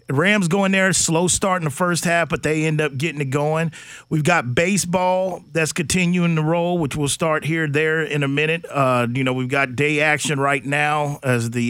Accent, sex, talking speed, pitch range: American, male, 215 wpm, 135-160 Hz